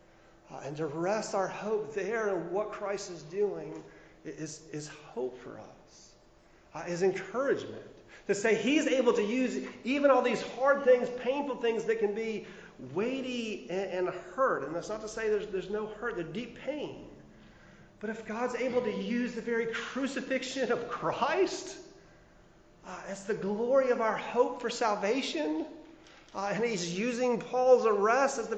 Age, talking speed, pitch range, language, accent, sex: 40-59, 170 wpm, 175-240 Hz, English, American, male